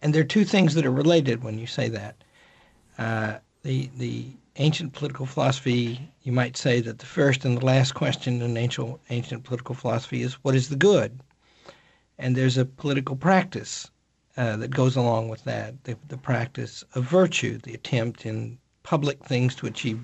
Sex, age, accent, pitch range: male, 50-69, American, 120-150 Hz